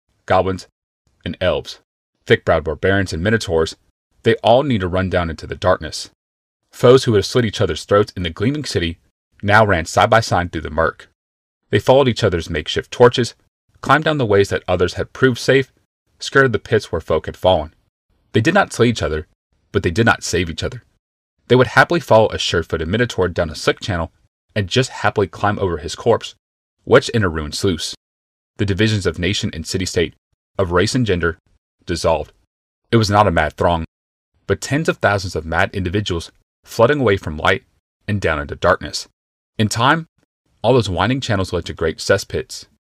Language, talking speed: English, 190 wpm